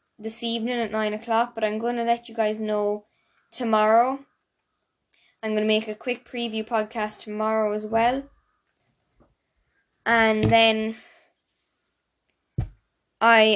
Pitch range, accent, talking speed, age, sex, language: 210-245 Hz, Irish, 125 wpm, 10-29, female, English